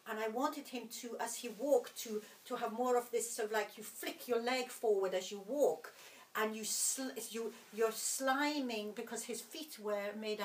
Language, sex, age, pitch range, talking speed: English, female, 50-69, 210-255 Hz, 220 wpm